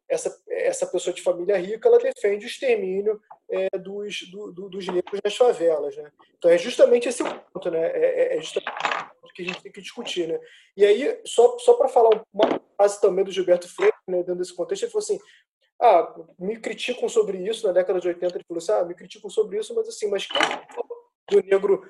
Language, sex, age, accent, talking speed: Portuguese, male, 20-39, Brazilian, 215 wpm